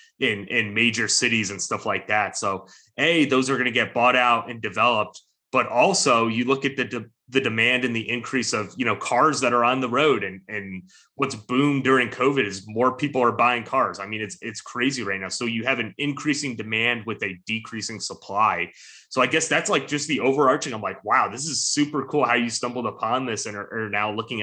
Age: 30-49